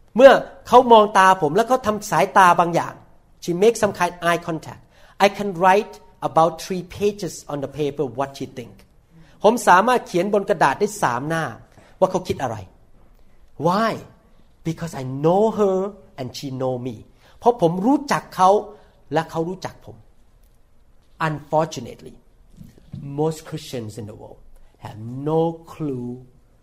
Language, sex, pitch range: Thai, male, 130-205 Hz